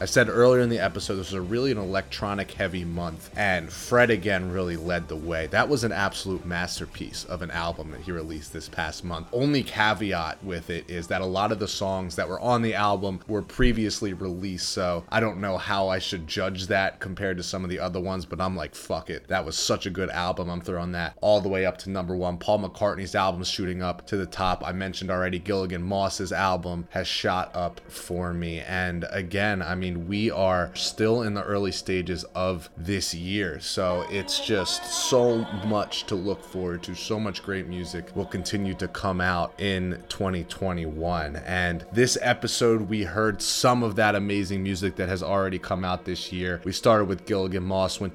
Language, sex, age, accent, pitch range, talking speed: English, male, 30-49, American, 90-100 Hz, 210 wpm